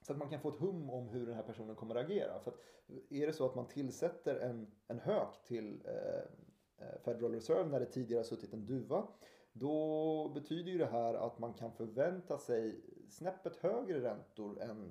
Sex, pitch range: male, 115-135 Hz